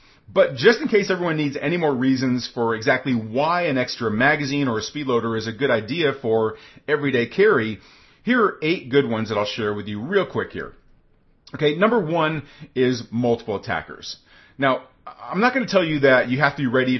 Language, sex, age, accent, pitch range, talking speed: English, male, 40-59, American, 115-145 Hz, 205 wpm